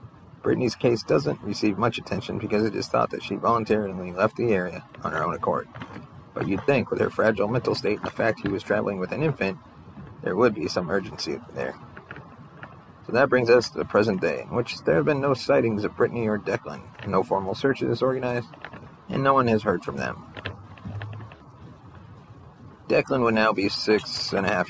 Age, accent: 30-49, American